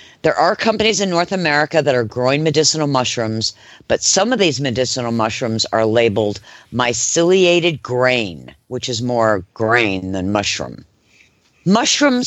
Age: 50-69